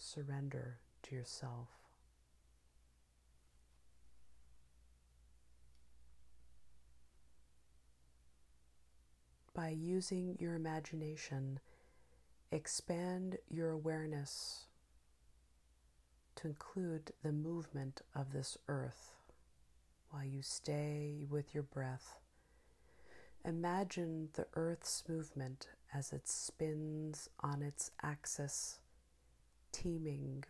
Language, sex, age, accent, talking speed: English, female, 40-59, American, 65 wpm